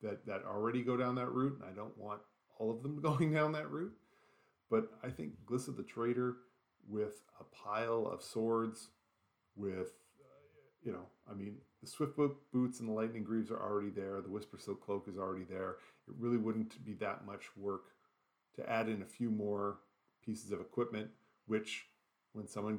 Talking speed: 185 wpm